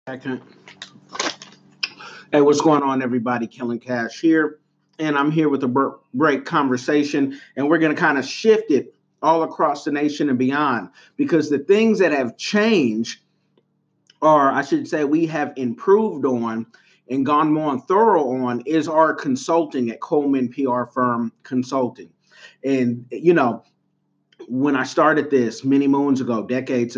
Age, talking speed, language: 40-59, 150 wpm, English